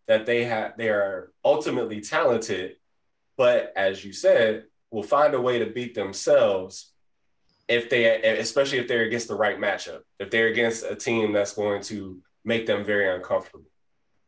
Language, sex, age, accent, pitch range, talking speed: English, male, 20-39, American, 105-125 Hz, 165 wpm